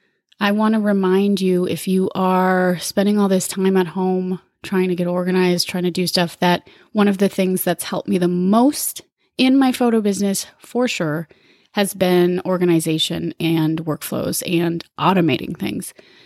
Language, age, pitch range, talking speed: English, 30-49, 185-230 Hz, 170 wpm